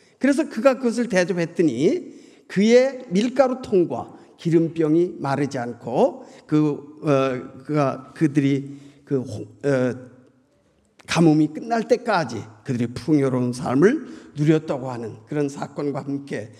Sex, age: male, 50-69